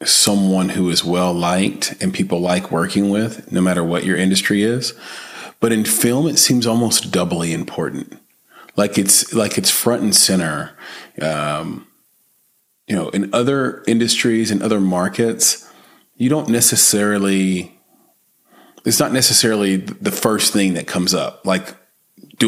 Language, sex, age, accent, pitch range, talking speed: English, male, 30-49, American, 95-115 Hz, 140 wpm